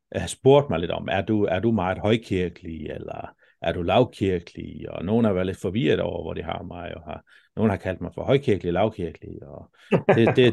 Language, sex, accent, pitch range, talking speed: Danish, male, native, 85-110 Hz, 215 wpm